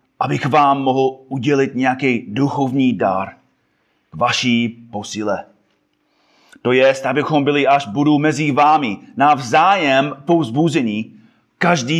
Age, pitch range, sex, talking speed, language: 30-49, 115-155 Hz, male, 110 wpm, Czech